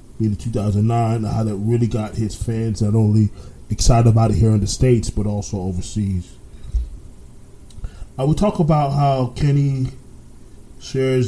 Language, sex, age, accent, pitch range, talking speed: English, male, 20-39, American, 105-125 Hz, 145 wpm